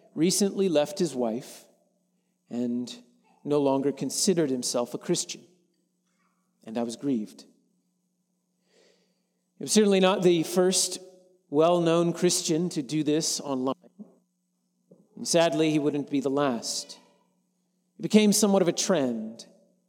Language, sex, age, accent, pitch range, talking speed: English, male, 40-59, American, 155-195 Hz, 120 wpm